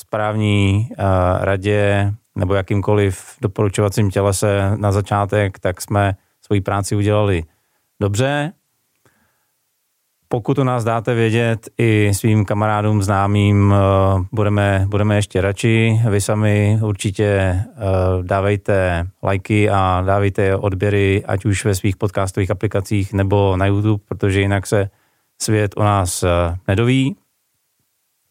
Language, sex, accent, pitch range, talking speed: Czech, male, native, 100-110 Hz, 110 wpm